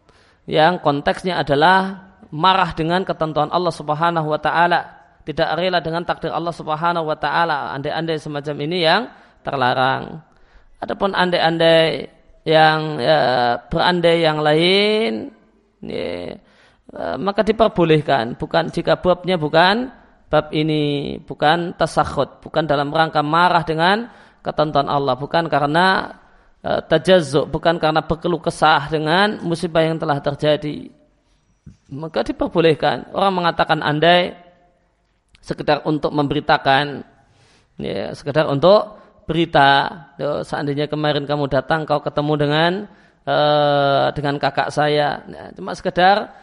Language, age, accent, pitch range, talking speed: Indonesian, 20-39, native, 150-180 Hz, 110 wpm